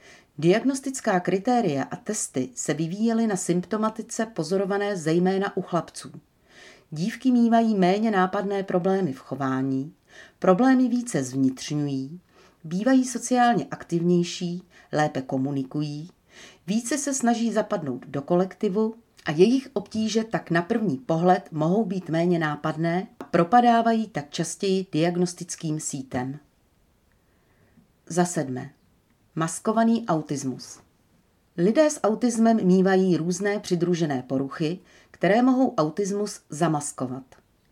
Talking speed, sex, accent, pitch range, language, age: 100 wpm, female, native, 155-210 Hz, Czech, 40-59